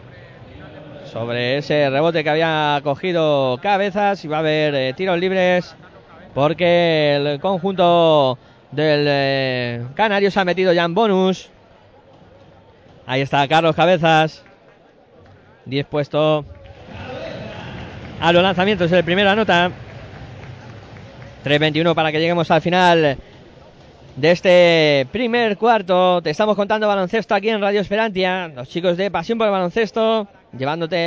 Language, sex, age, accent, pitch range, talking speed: Spanish, male, 20-39, Spanish, 135-195 Hz, 125 wpm